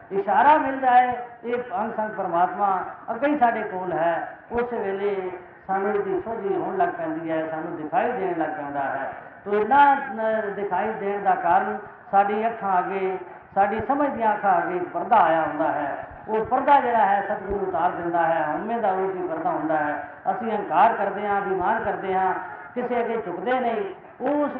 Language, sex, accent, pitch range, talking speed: Hindi, female, native, 185-250 Hz, 155 wpm